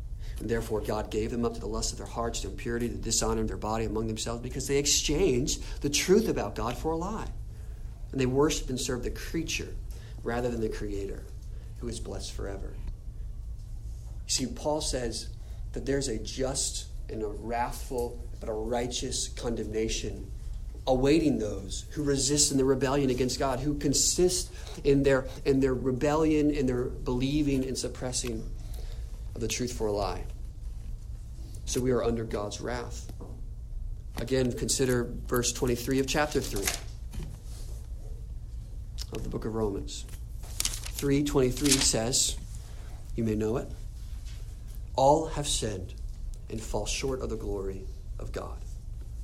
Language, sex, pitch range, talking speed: English, male, 105-135 Hz, 150 wpm